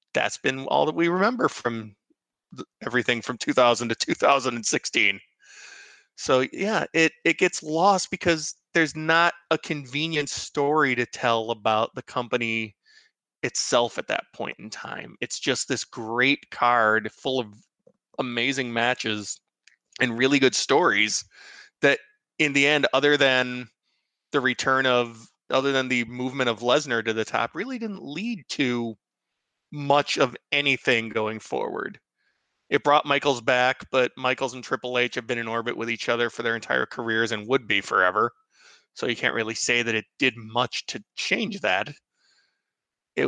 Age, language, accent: 20-39, English, American